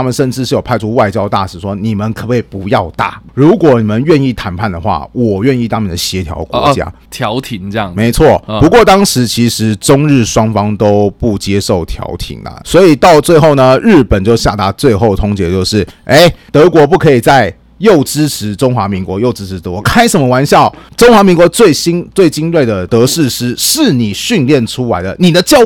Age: 30-49